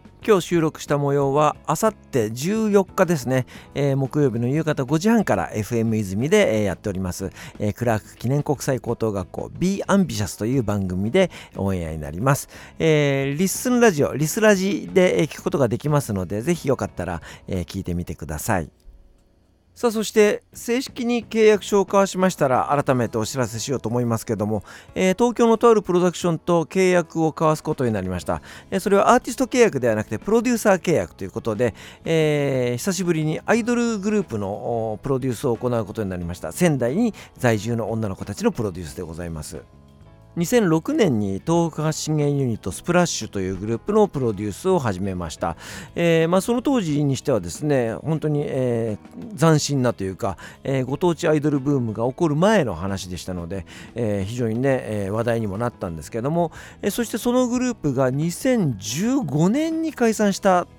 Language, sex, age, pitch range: Japanese, male, 50-69, 110-180 Hz